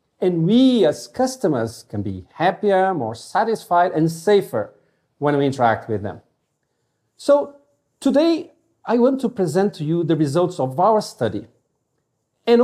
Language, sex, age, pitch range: Korean, male, 50-69, 150-230 Hz